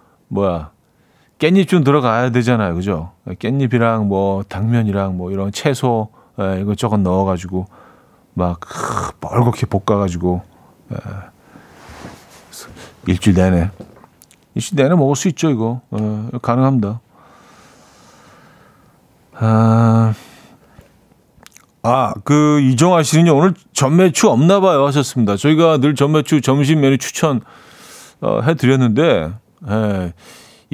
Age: 40-59